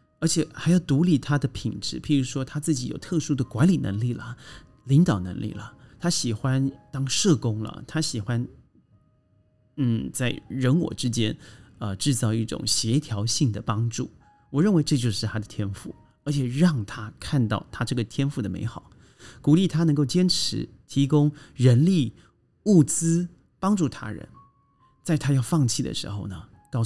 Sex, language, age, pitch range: male, Chinese, 30-49, 110-145 Hz